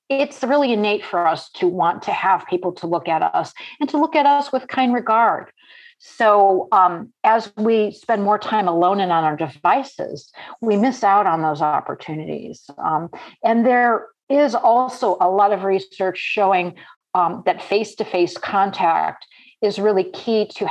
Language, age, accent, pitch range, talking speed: English, 50-69, American, 170-225 Hz, 170 wpm